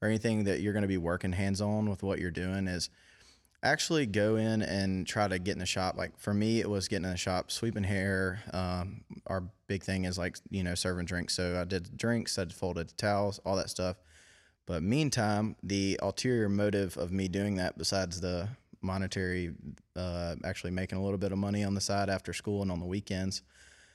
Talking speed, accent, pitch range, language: 210 wpm, American, 85-100 Hz, English